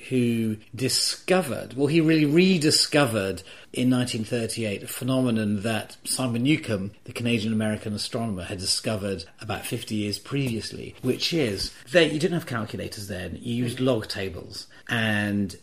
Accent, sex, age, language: British, male, 40-59, English